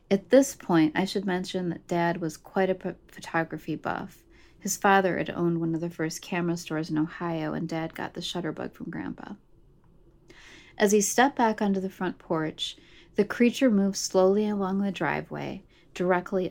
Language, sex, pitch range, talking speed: English, female, 165-190 Hz, 180 wpm